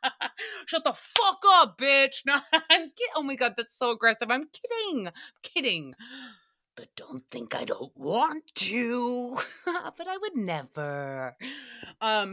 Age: 30-49